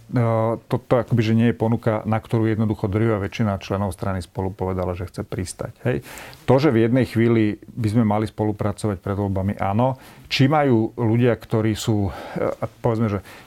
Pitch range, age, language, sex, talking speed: 100-115 Hz, 40-59, Slovak, male, 155 wpm